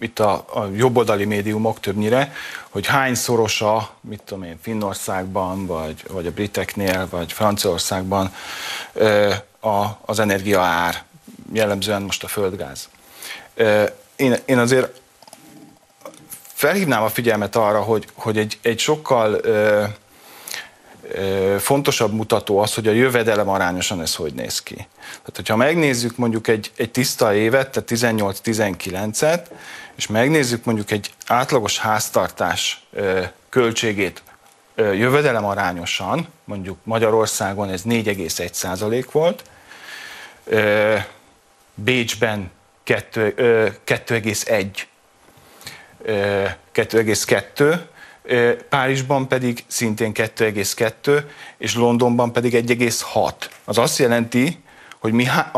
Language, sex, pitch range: Hungarian, male, 100-120 Hz